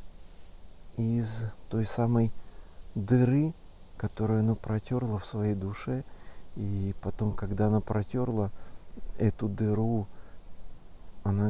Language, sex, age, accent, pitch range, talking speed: Russian, male, 50-69, native, 85-115 Hz, 95 wpm